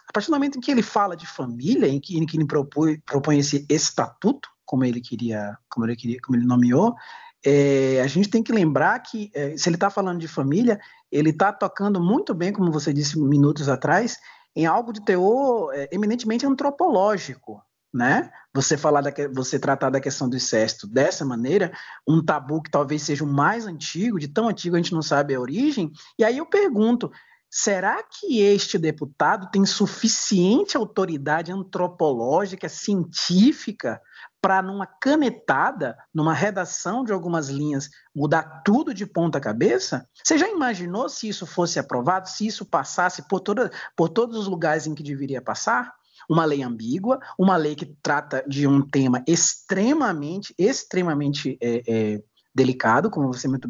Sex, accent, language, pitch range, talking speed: male, Brazilian, Portuguese, 145-215 Hz, 170 wpm